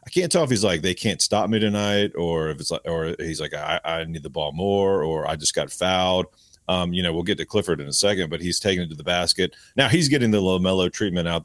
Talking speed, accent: 285 wpm, American